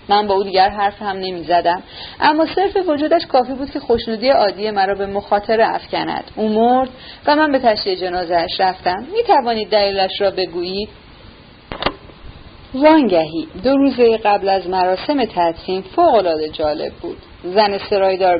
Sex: female